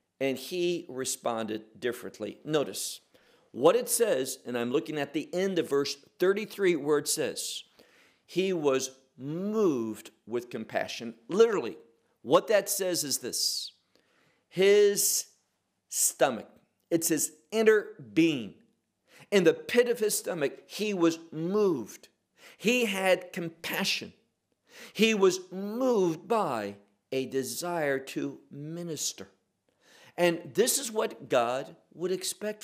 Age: 50-69